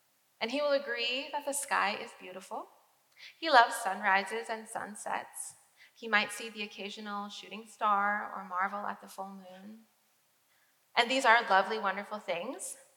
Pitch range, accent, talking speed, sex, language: 195-240 Hz, American, 155 wpm, female, English